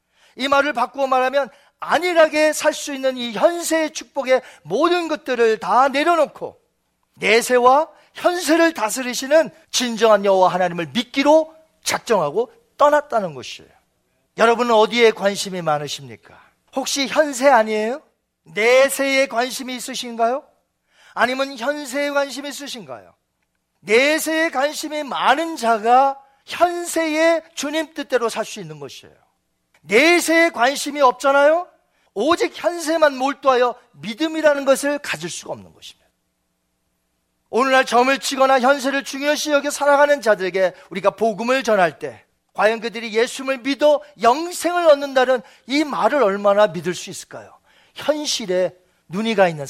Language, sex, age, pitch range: Korean, male, 40-59, 220-295 Hz